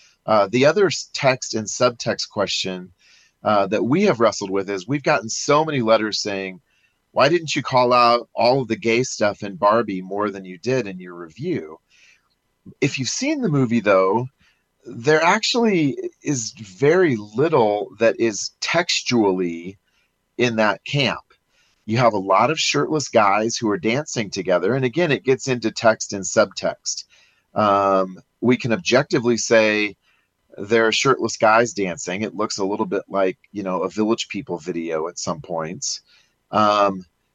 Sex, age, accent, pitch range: male, 30-49, American, 100-125 Hz